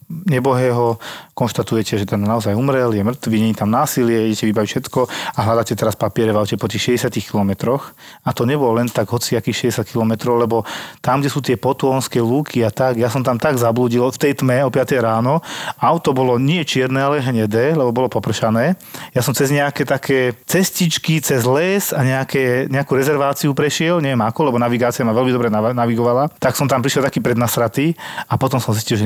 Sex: male